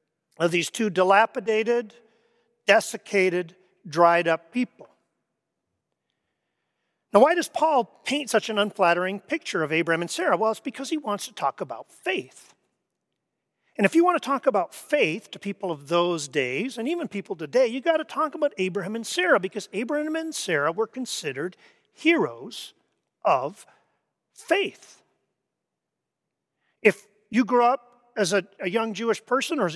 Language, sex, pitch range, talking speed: English, male, 180-255 Hz, 150 wpm